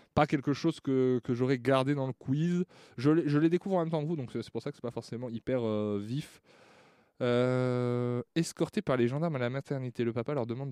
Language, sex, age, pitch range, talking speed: French, male, 20-39, 115-155 Hz, 235 wpm